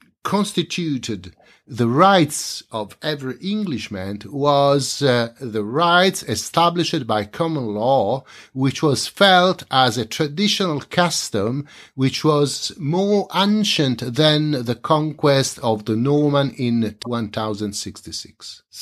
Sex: male